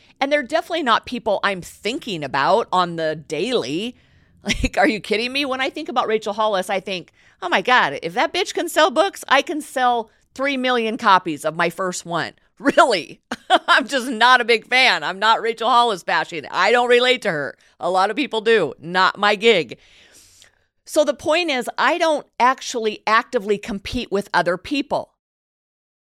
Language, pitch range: English, 200-265 Hz